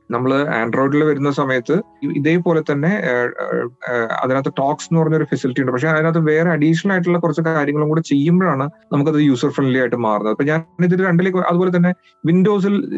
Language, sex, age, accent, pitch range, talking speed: Malayalam, male, 30-49, native, 125-165 Hz, 155 wpm